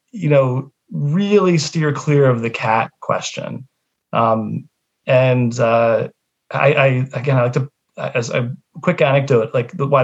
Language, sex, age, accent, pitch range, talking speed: English, male, 30-49, American, 125-145 Hz, 145 wpm